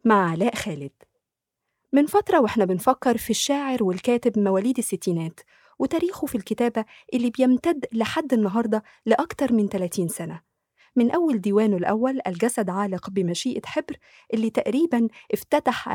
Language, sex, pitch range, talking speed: Arabic, female, 205-285 Hz, 130 wpm